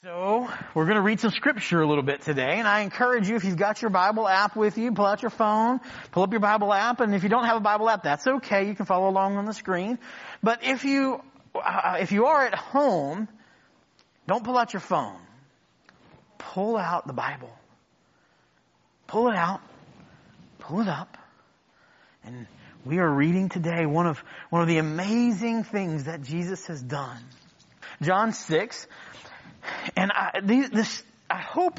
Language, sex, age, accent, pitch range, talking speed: English, male, 30-49, American, 170-225 Hz, 180 wpm